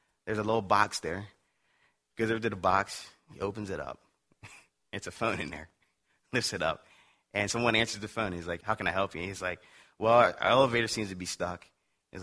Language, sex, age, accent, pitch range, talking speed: English, male, 20-39, American, 90-130 Hz, 225 wpm